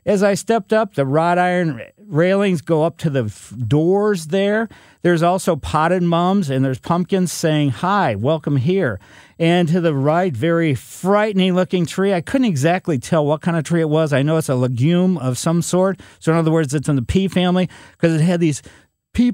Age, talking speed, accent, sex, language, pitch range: 50-69, 200 wpm, American, male, English, 135-180 Hz